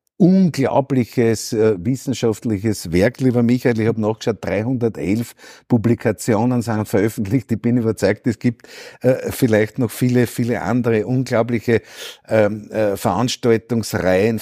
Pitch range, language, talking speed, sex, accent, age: 105-120 Hz, German, 115 wpm, male, Austrian, 50-69